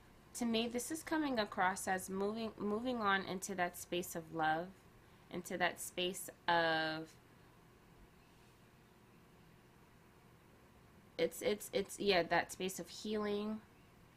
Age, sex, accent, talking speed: 20-39, female, American, 115 wpm